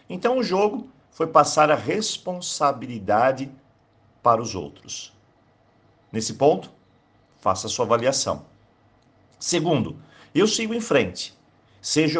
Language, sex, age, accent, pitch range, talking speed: Portuguese, male, 50-69, Brazilian, 120-185 Hz, 105 wpm